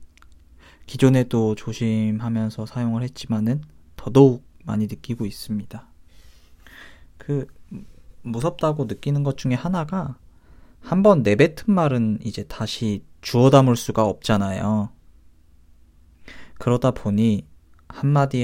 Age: 20-39